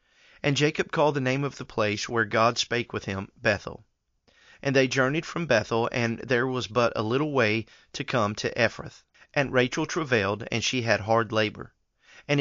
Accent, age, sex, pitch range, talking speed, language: American, 40-59, male, 110-135 Hz, 190 wpm, English